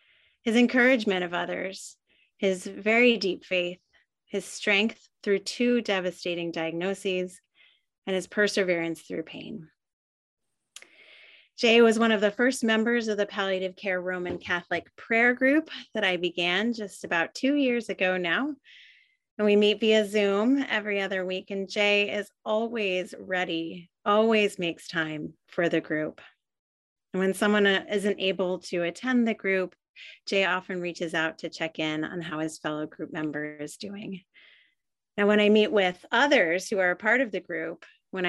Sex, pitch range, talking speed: female, 175-220 Hz, 155 wpm